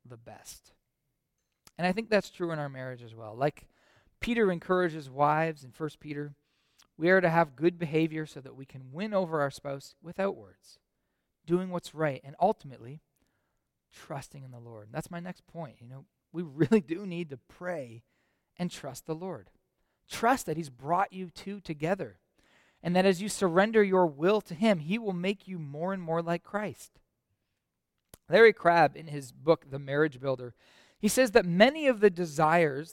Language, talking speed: English, 180 wpm